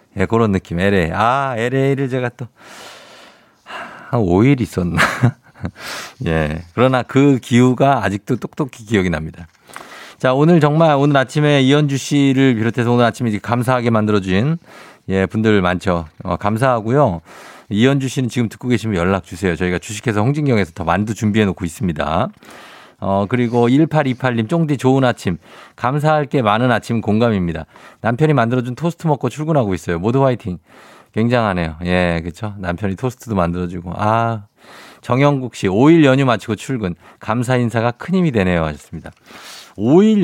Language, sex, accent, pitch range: Korean, male, native, 100-135 Hz